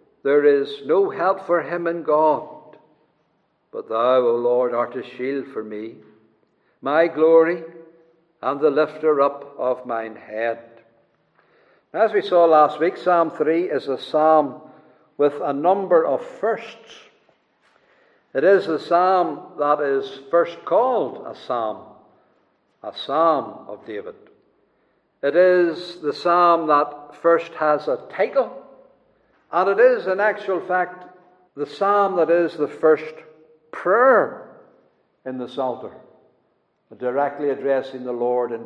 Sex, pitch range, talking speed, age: male, 130-180 Hz, 130 wpm, 60-79